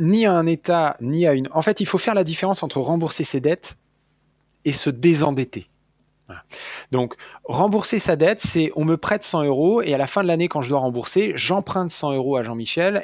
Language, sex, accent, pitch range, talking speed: French, male, French, 120-165 Hz, 210 wpm